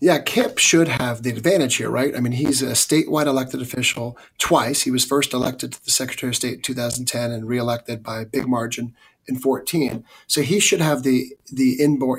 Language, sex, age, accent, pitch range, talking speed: English, male, 30-49, American, 125-145 Hz, 205 wpm